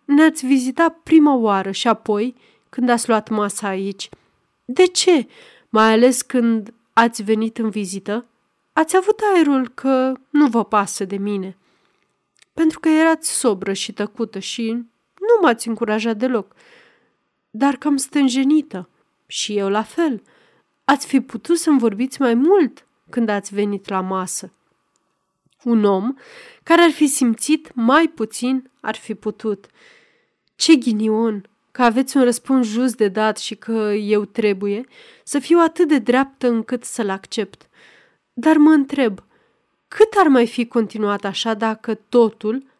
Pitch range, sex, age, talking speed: 215-285 Hz, female, 30-49, 145 wpm